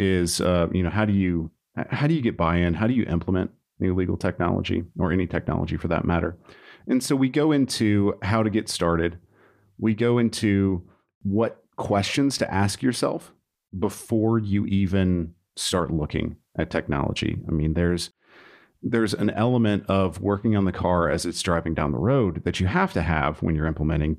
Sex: male